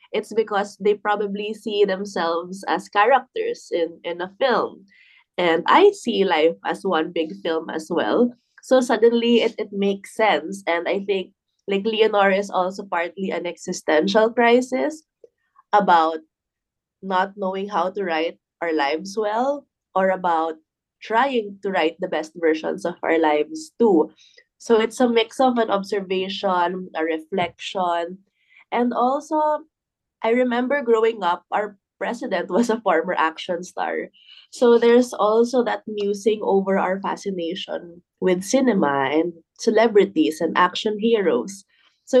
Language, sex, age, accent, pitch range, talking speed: English, female, 20-39, Filipino, 180-235 Hz, 140 wpm